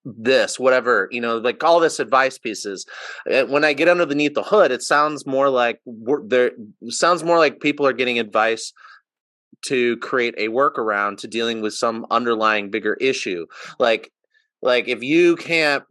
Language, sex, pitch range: English, male, 105-140 Hz